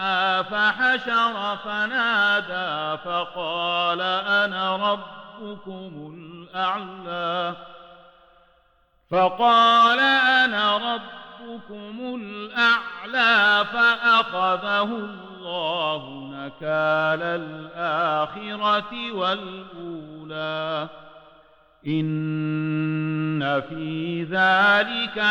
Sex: male